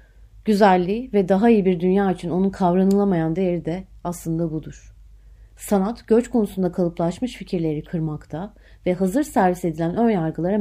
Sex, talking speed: female, 135 wpm